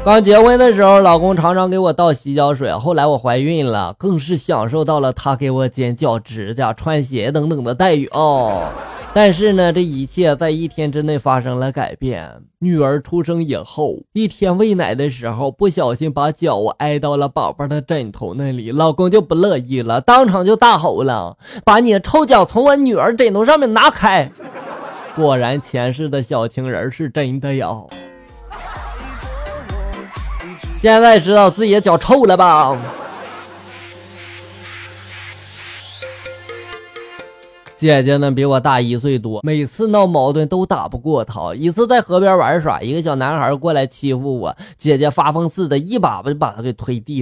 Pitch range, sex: 130-190 Hz, male